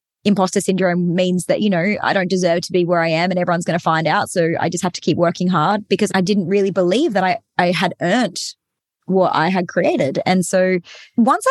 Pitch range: 175-200 Hz